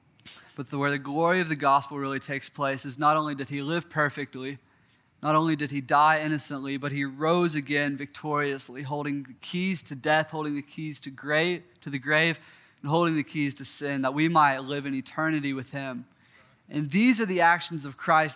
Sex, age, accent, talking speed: male, 20-39, American, 200 wpm